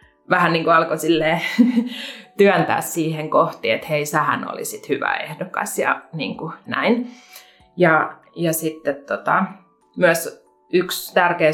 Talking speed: 115 wpm